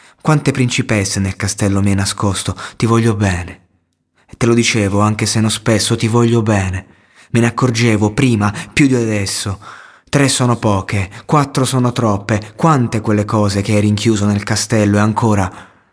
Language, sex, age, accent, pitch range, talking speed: Italian, male, 20-39, native, 95-115 Hz, 160 wpm